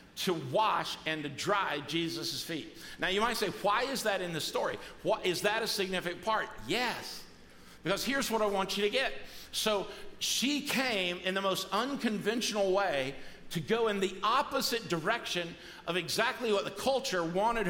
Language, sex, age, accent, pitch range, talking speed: English, male, 50-69, American, 155-215 Hz, 175 wpm